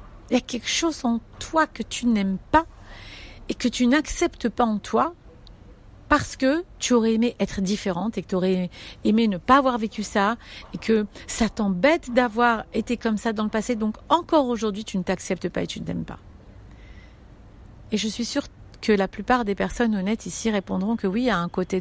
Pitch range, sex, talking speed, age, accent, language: 195-255 Hz, female, 210 wpm, 50-69, French, French